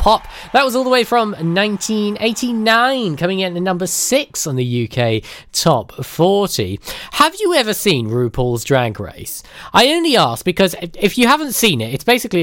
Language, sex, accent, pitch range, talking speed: English, male, British, 125-190 Hz, 170 wpm